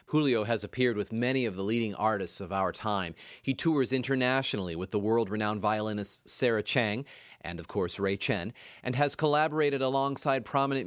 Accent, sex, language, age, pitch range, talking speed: American, male, English, 30-49, 105-135 Hz, 170 wpm